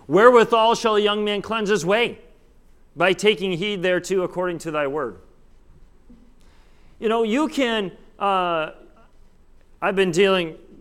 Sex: male